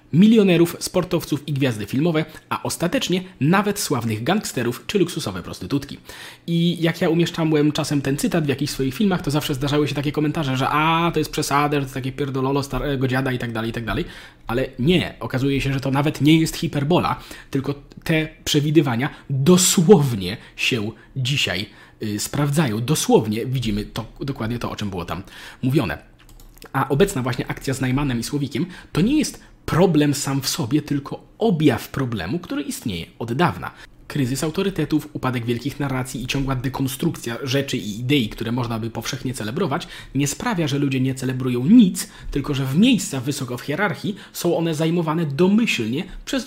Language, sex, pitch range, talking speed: Polish, male, 130-165 Hz, 170 wpm